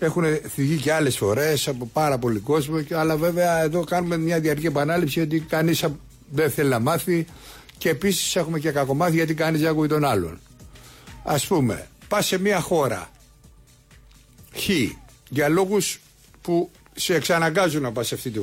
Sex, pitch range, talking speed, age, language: male, 140-185 Hz, 165 wpm, 60-79, English